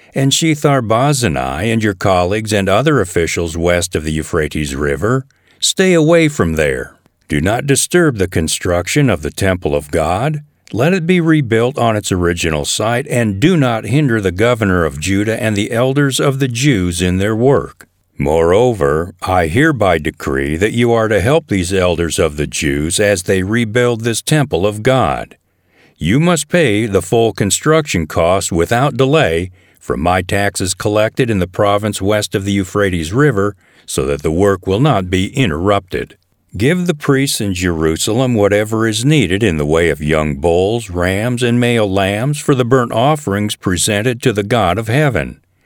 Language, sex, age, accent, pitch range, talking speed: English, male, 50-69, American, 90-130 Hz, 170 wpm